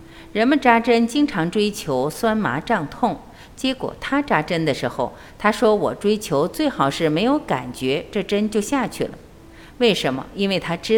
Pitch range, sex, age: 155-240 Hz, female, 50-69